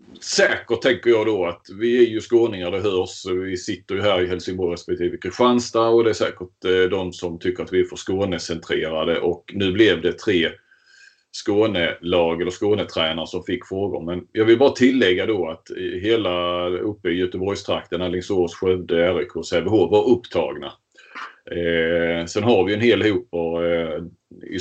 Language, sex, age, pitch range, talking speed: Swedish, male, 30-49, 90-120 Hz, 170 wpm